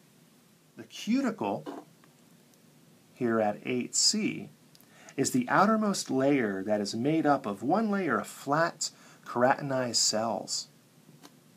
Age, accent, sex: 40-59, American, male